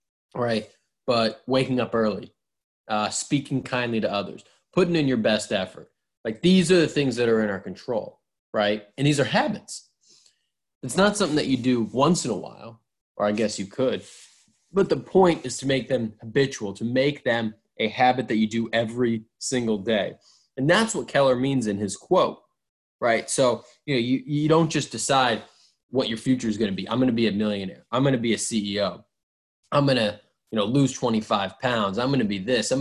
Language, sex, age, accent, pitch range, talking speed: English, male, 20-39, American, 110-135 Hz, 205 wpm